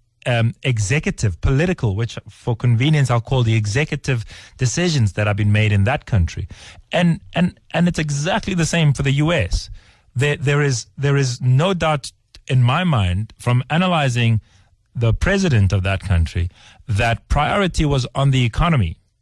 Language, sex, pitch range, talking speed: English, male, 105-145 Hz, 160 wpm